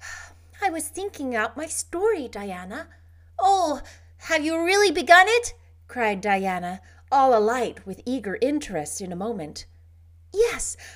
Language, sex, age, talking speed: English, female, 30-49, 130 wpm